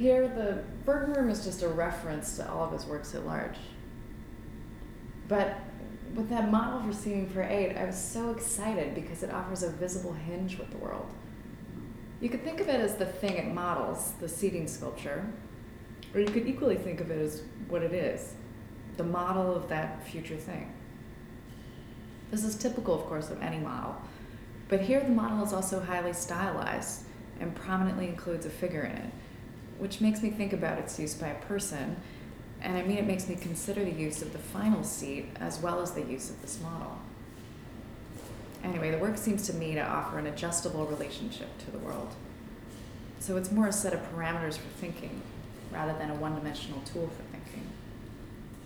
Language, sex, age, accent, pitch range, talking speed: English, female, 20-39, American, 155-200 Hz, 185 wpm